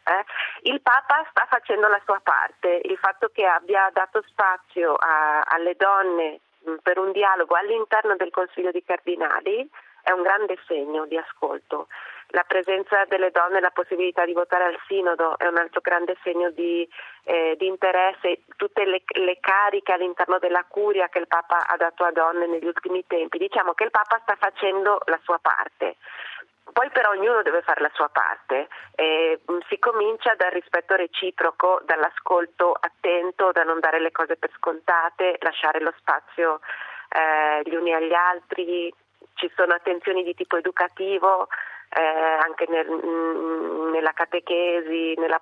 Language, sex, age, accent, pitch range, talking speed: Italian, female, 30-49, native, 170-190 Hz, 155 wpm